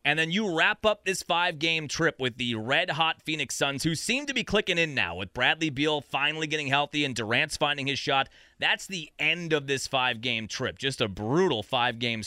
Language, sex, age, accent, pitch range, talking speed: English, male, 30-49, American, 125-170 Hz, 205 wpm